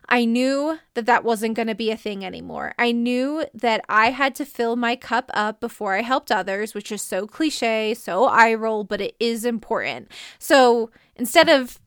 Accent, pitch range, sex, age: American, 215-250 Hz, female, 20-39